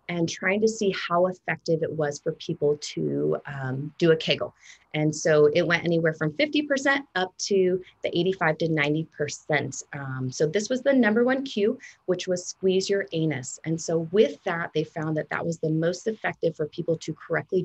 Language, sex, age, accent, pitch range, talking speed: English, female, 30-49, American, 155-210 Hz, 195 wpm